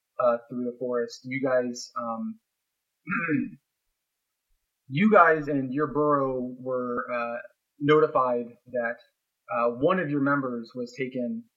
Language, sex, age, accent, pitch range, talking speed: English, male, 30-49, American, 120-150 Hz, 120 wpm